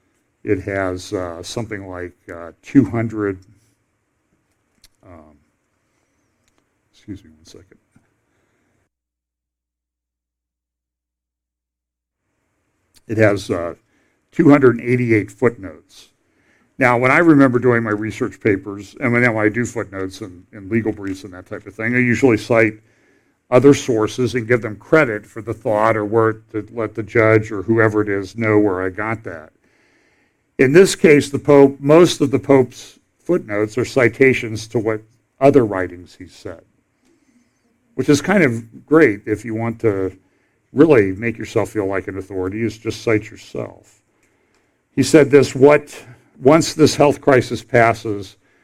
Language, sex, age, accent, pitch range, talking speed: English, male, 60-79, American, 100-125 Hz, 145 wpm